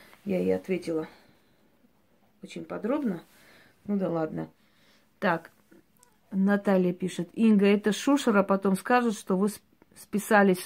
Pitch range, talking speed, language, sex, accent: 185-225 Hz, 105 wpm, Russian, female, native